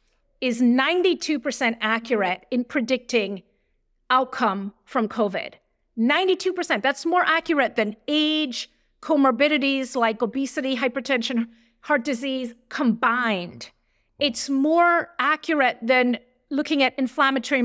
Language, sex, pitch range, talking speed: English, female, 230-290 Hz, 95 wpm